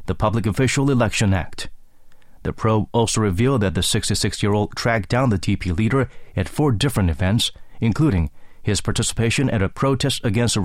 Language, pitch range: English, 100-125 Hz